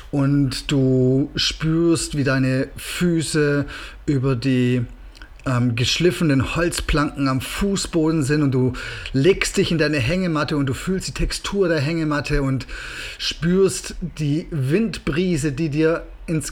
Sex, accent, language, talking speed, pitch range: male, German, German, 125 wpm, 140-180 Hz